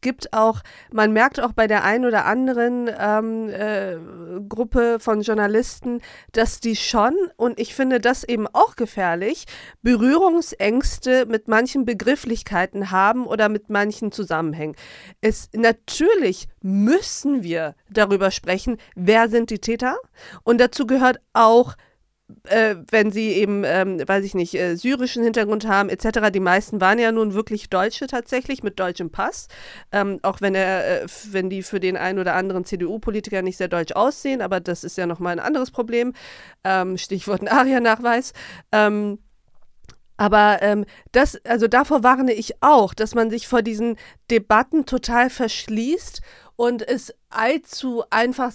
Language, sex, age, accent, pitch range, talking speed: German, female, 40-59, German, 195-240 Hz, 150 wpm